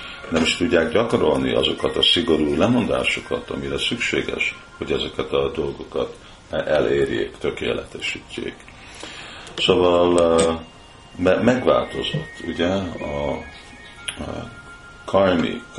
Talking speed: 80 wpm